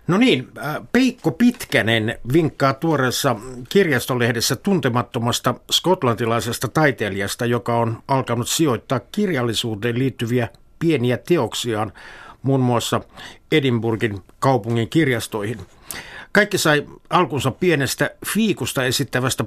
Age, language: 60-79, Finnish